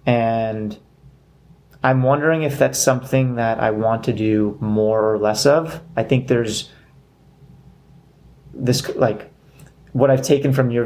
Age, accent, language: 30-49, American, English